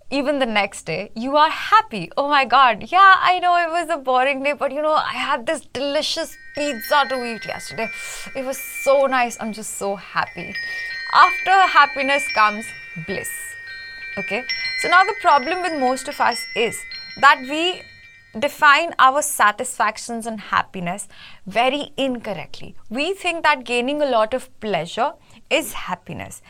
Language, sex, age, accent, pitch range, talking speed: English, female, 20-39, Indian, 220-310 Hz, 160 wpm